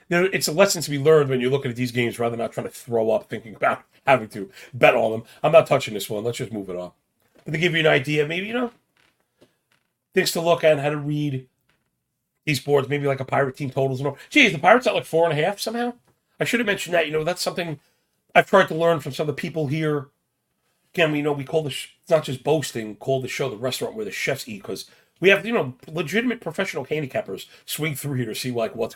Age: 40-59